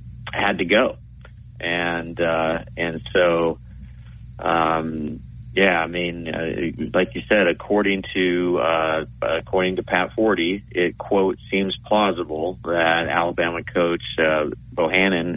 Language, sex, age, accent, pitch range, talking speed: English, male, 40-59, American, 85-100 Hz, 120 wpm